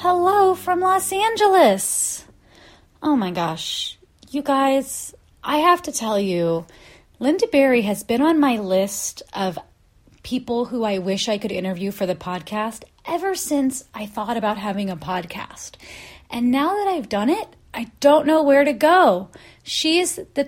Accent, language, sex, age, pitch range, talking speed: American, English, female, 30-49, 185-275 Hz, 160 wpm